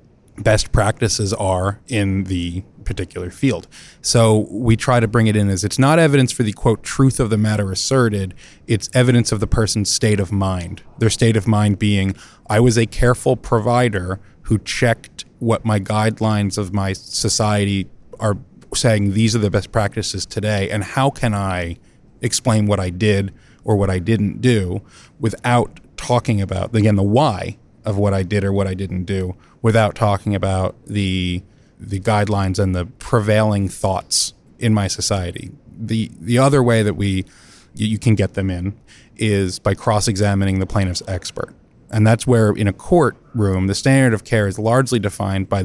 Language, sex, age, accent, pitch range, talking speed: English, male, 30-49, American, 100-115 Hz, 175 wpm